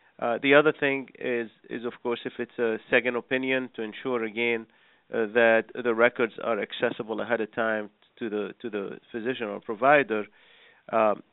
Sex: male